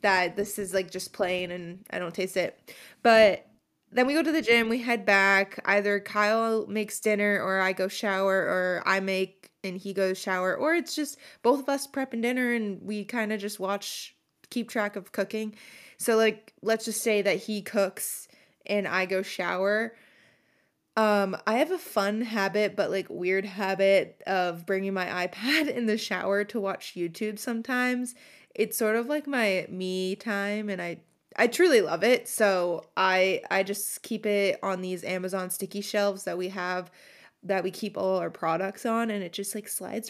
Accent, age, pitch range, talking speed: American, 20-39, 190-225 Hz, 190 wpm